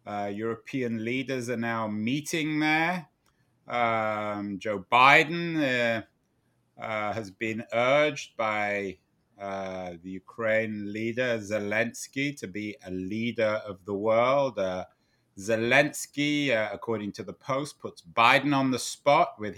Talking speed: 125 wpm